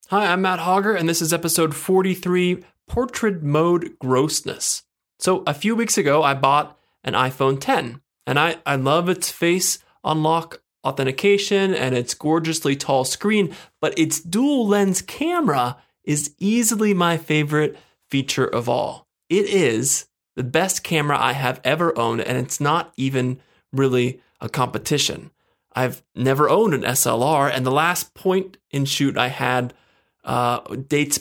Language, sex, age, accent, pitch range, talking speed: English, male, 20-39, American, 130-180 Hz, 150 wpm